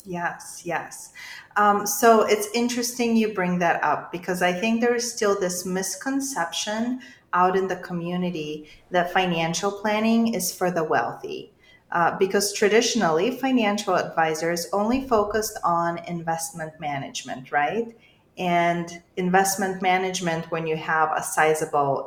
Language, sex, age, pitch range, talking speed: English, female, 30-49, 165-210 Hz, 130 wpm